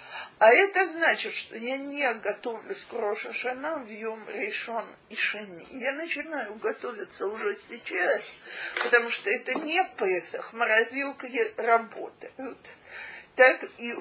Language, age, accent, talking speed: Russian, 40-59, native, 125 wpm